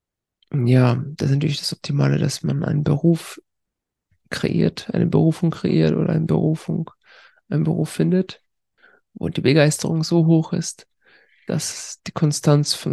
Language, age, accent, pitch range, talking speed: German, 50-69, German, 155-185 Hz, 130 wpm